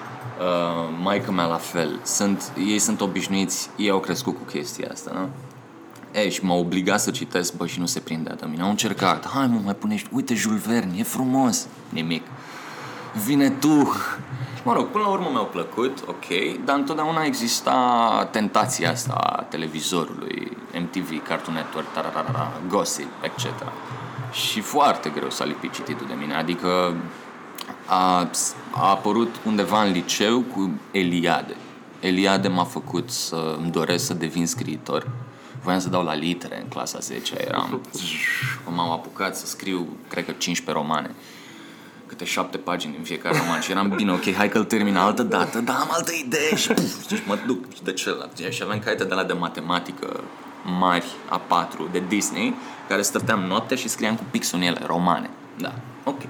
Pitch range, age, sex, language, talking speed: 85-125 Hz, 20-39, male, Romanian, 165 wpm